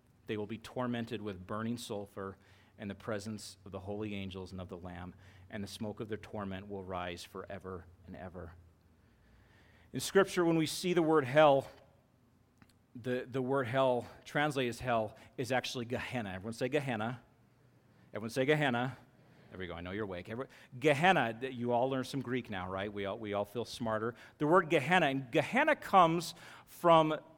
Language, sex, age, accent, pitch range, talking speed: English, male, 40-59, American, 110-150 Hz, 175 wpm